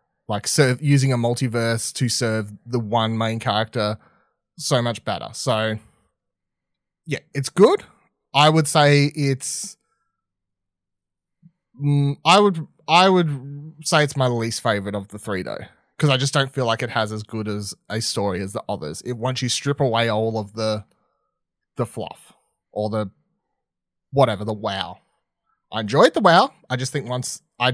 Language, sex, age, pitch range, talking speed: English, male, 30-49, 115-155 Hz, 165 wpm